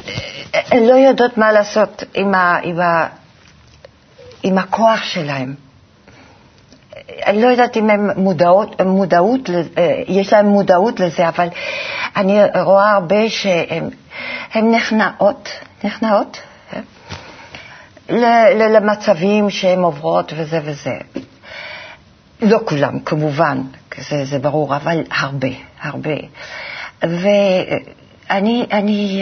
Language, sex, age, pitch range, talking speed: Hebrew, female, 60-79, 165-210 Hz, 100 wpm